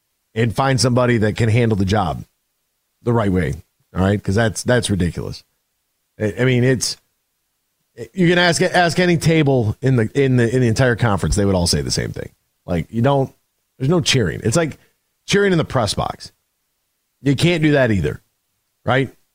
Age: 40-59